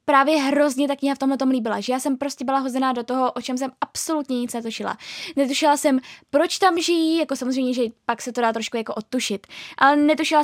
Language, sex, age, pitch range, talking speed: Czech, female, 10-29, 260-310 Hz, 220 wpm